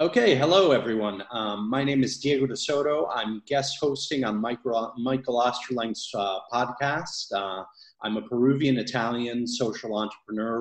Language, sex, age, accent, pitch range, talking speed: English, male, 30-49, American, 105-135 Hz, 135 wpm